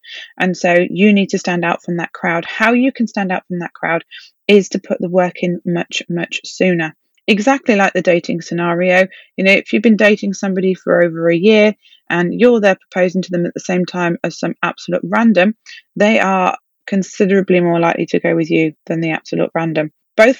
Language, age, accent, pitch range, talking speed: English, 20-39, British, 175-215 Hz, 210 wpm